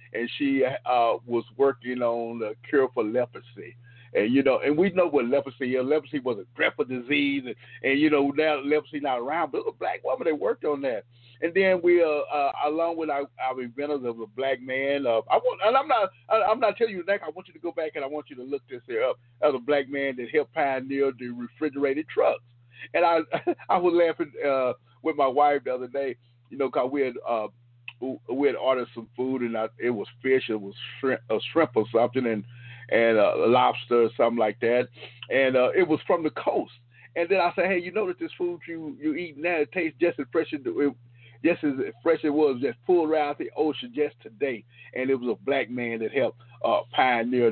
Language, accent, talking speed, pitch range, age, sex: English, American, 235 wpm, 120-155 Hz, 50-69, male